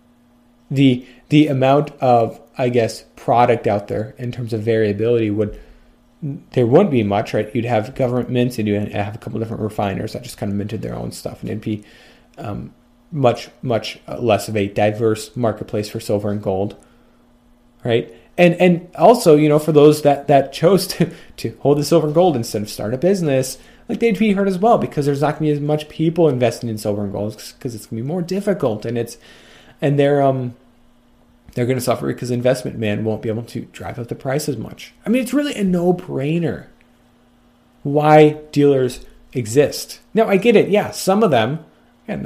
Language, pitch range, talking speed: English, 115-145 Hz, 205 wpm